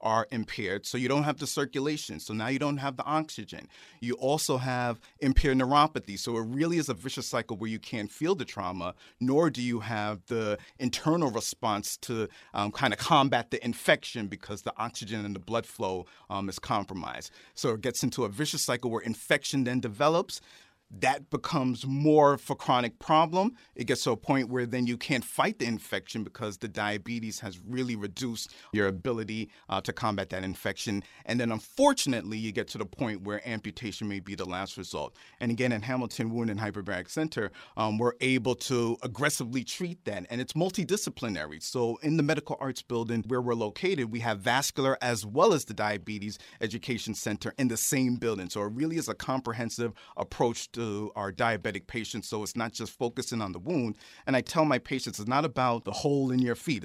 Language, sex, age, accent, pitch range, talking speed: English, male, 40-59, American, 110-135 Hz, 200 wpm